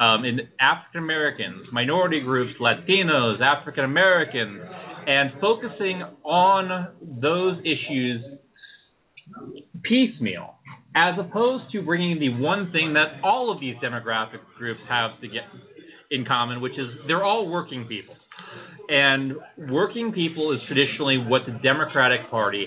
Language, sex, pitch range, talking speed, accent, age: English, male, 120-170 Hz, 125 wpm, American, 30-49